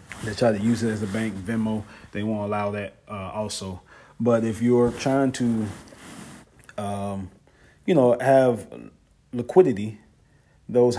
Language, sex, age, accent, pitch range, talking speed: English, male, 30-49, American, 100-115 Hz, 140 wpm